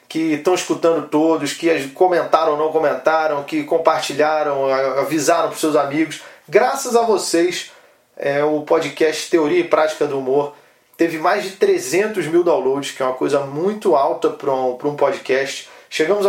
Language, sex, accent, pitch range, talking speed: Portuguese, male, Brazilian, 150-210 Hz, 160 wpm